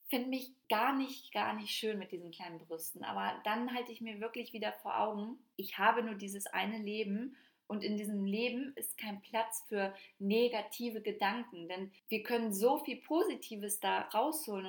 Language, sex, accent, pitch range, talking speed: German, female, German, 195-230 Hz, 180 wpm